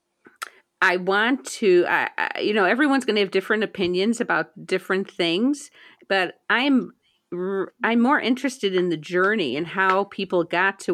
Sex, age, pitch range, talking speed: female, 50-69, 165-200 Hz, 160 wpm